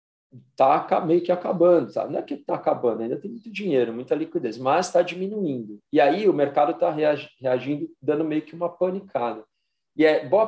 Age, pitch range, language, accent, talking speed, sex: 40-59, 130-175 Hz, Portuguese, Brazilian, 190 wpm, male